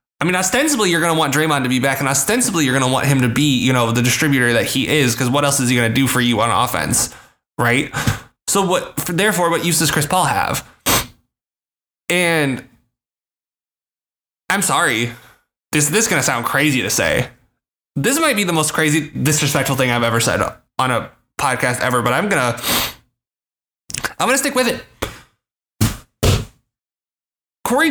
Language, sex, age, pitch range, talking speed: English, male, 20-39, 125-180 Hz, 185 wpm